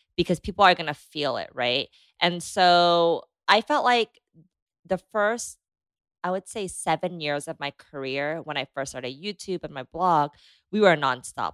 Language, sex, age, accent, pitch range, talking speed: English, female, 20-39, American, 150-195 Hz, 170 wpm